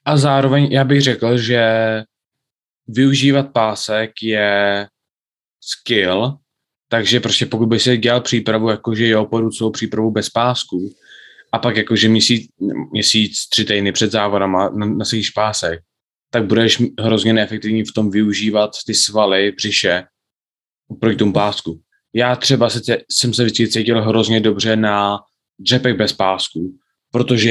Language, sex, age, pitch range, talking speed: Czech, male, 20-39, 105-115 Hz, 135 wpm